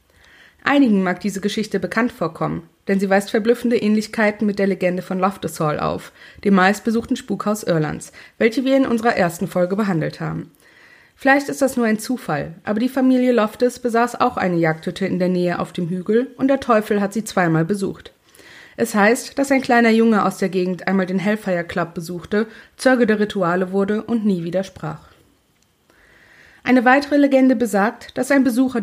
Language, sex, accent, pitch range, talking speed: German, female, German, 190-240 Hz, 175 wpm